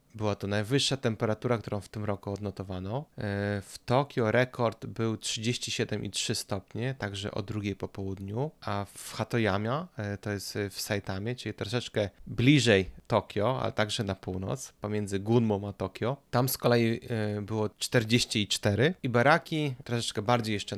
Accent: native